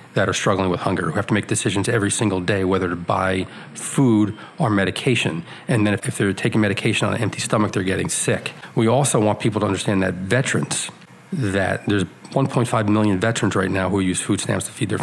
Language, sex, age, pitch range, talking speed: English, male, 40-59, 100-120 Hz, 220 wpm